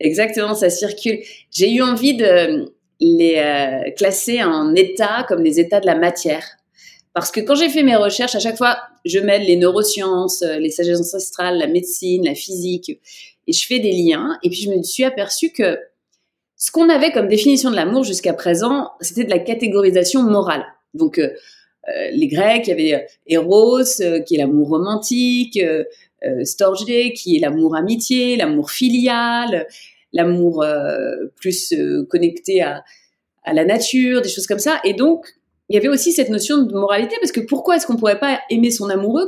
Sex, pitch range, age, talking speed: female, 190-305 Hz, 30-49, 180 wpm